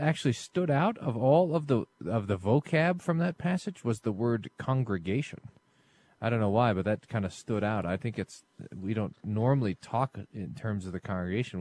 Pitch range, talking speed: 105-145 Hz, 200 wpm